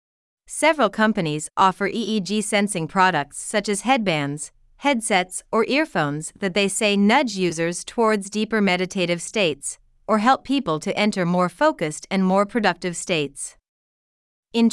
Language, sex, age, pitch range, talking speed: Vietnamese, female, 30-49, 175-225 Hz, 130 wpm